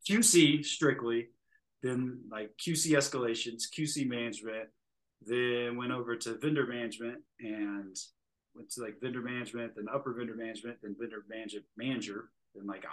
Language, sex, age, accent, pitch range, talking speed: English, male, 20-39, American, 100-125 Hz, 135 wpm